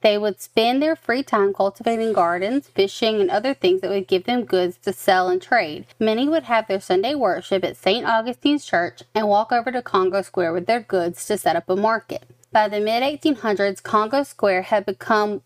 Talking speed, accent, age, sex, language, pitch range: 200 wpm, American, 20-39, female, English, 190-230 Hz